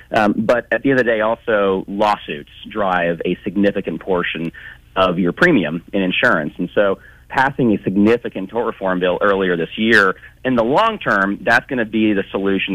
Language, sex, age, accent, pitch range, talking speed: English, male, 40-59, American, 90-110 Hz, 190 wpm